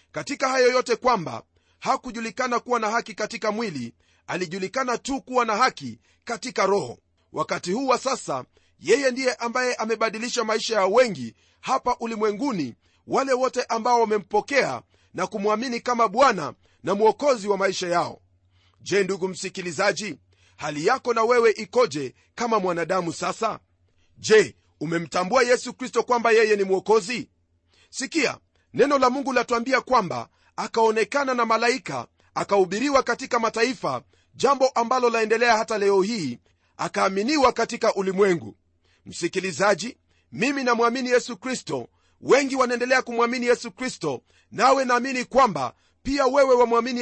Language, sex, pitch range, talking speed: Swahili, male, 180-250 Hz, 130 wpm